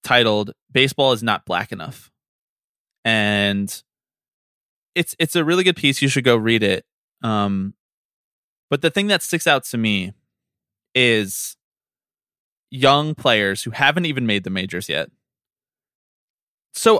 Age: 20-39